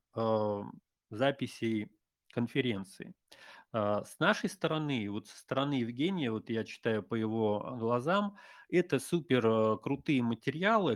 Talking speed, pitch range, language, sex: 105 wpm, 115-155 Hz, Russian, male